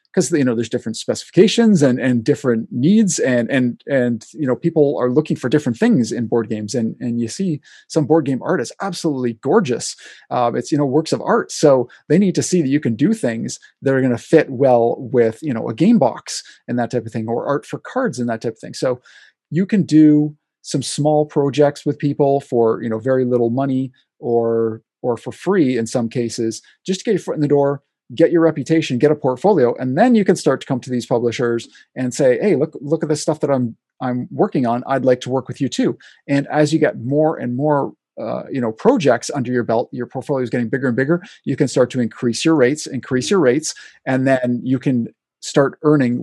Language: English